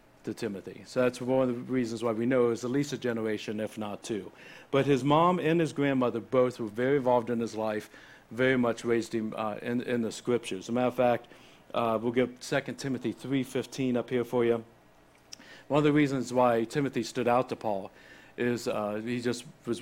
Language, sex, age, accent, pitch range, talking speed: English, male, 60-79, American, 115-130 Hz, 220 wpm